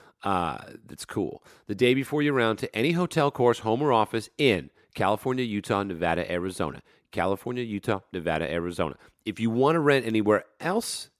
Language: English